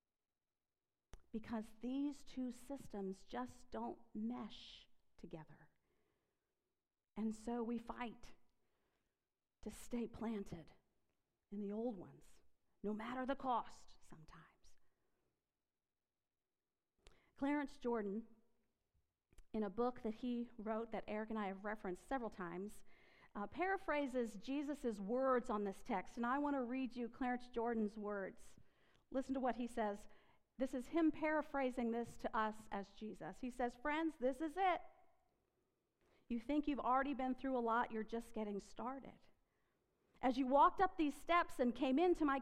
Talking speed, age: 140 wpm, 50-69